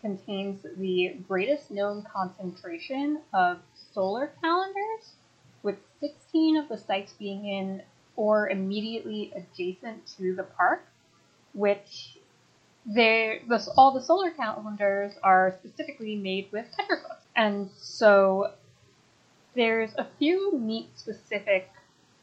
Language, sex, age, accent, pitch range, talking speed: English, female, 20-39, American, 185-235 Hz, 105 wpm